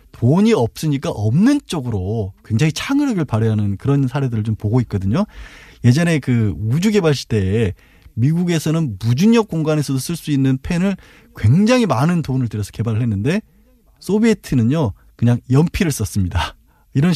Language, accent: Korean, native